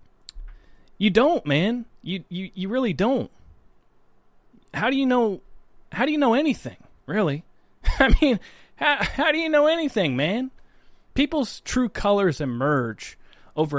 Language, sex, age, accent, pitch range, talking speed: English, male, 30-49, American, 135-205 Hz, 140 wpm